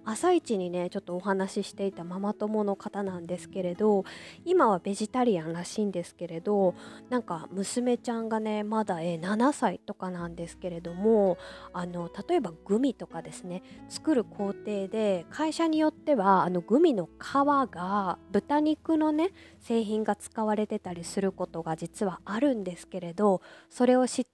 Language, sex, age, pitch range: Japanese, female, 20-39, 195-265 Hz